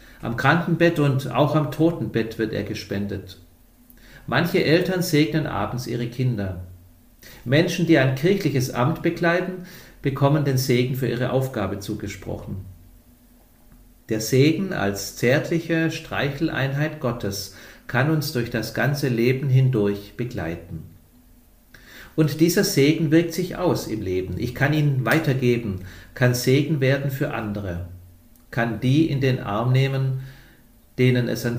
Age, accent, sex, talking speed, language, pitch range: 50-69, German, male, 130 wpm, German, 105-150 Hz